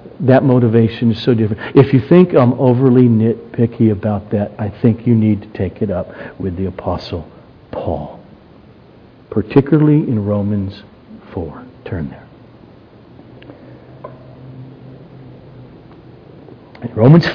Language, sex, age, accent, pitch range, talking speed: English, male, 50-69, American, 105-140 Hz, 110 wpm